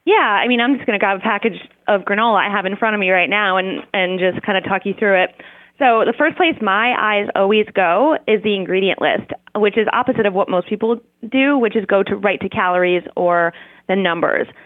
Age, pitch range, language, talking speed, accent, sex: 20-39, 195-240 Hz, English, 240 wpm, American, female